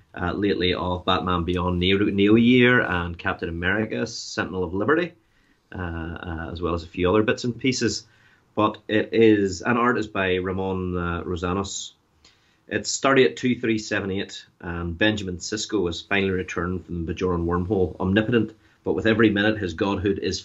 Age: 30-49